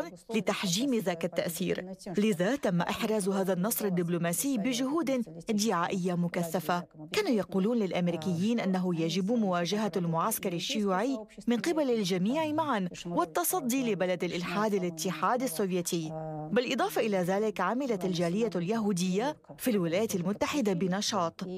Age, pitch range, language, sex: 30-49, 180-240 Hz, English, female